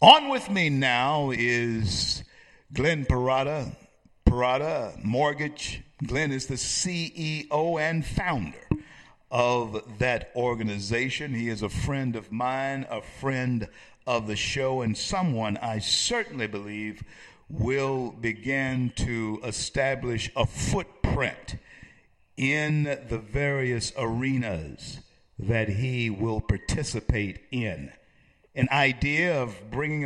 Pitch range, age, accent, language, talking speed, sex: 115-150 Hz, 50-69, American, English, 105 wpm, male